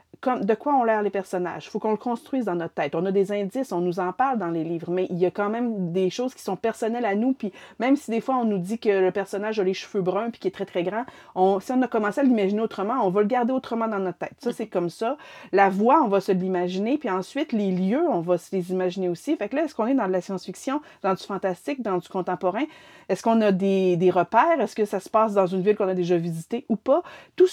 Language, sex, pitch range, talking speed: French, female, 190-265 Hz, 285 wpm